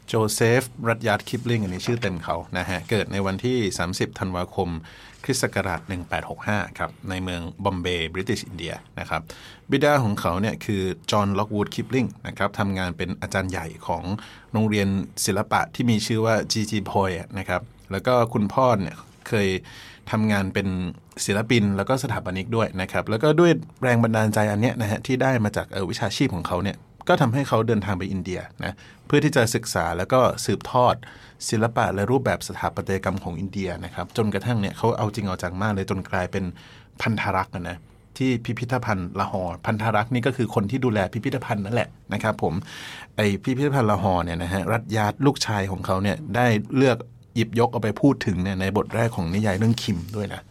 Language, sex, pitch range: English, male, 95-120 Hz